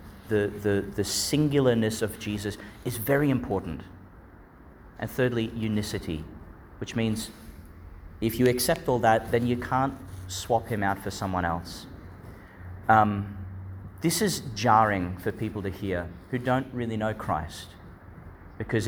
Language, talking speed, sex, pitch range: English, 135 wpm, male, 95-120 Hz